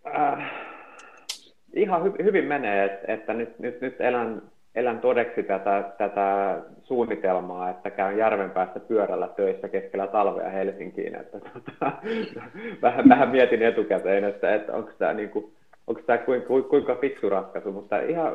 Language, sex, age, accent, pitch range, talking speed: Finnish, male, 30-49, native, 100-130 Hz, 135 wpm